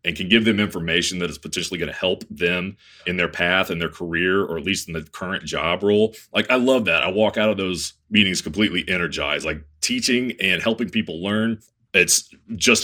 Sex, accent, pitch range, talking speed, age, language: male, American, 85-110 Hz, 215 wpm, 30-49, English